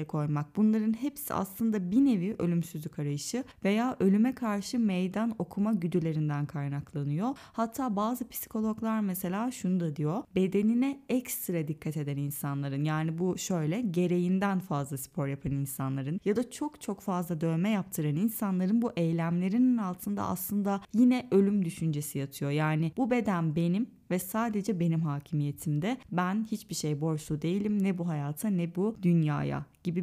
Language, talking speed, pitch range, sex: Turkish, 140 wpm, 160-220 Hz, female